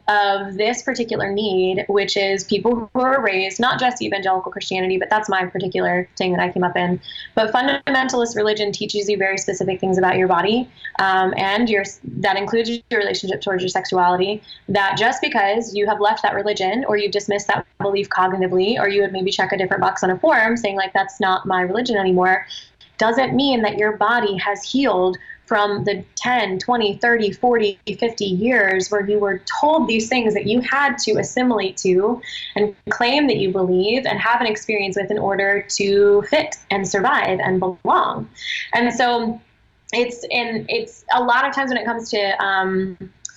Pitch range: 195-230 Hz